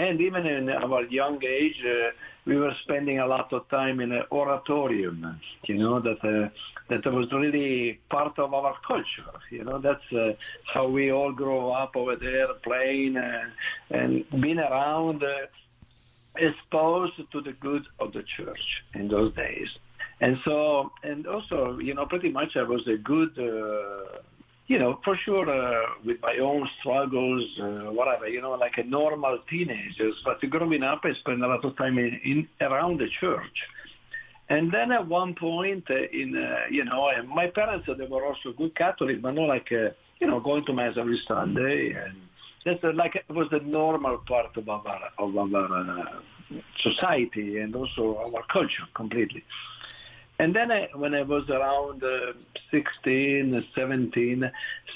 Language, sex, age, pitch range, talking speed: English, male, 50-69, 120-145 Hz, 170 wpm